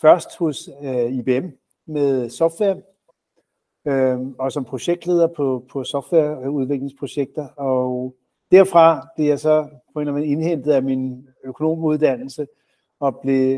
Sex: male